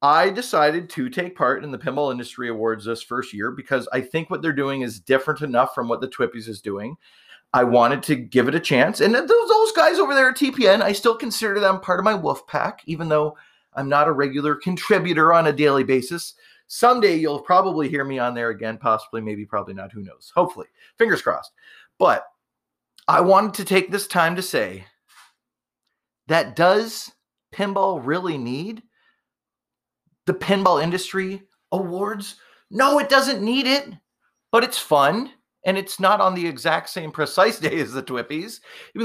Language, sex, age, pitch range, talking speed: English, male, 30-49, 135-200 Hz, 180 wpm